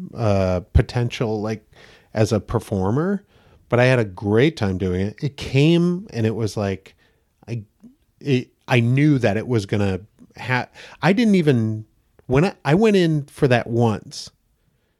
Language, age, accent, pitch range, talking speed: English, 40-59, American, 110-145 Hz, 165 wpm